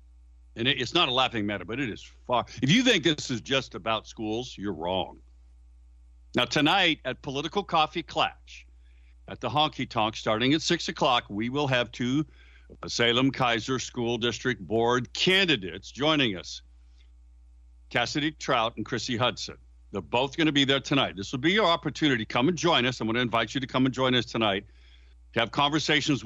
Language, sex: English, male